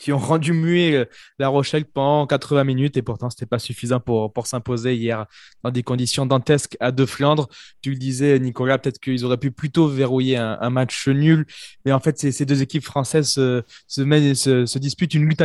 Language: French